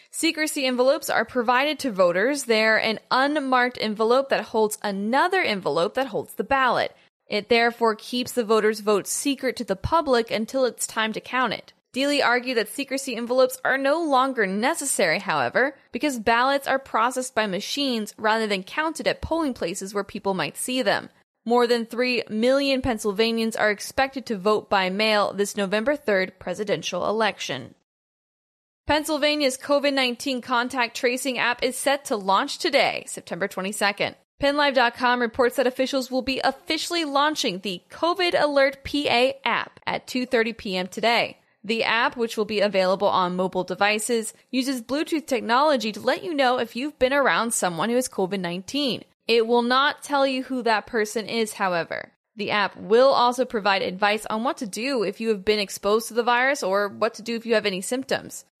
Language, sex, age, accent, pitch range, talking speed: English, female, 10-29, American, 215-270 Hz, 170 wpm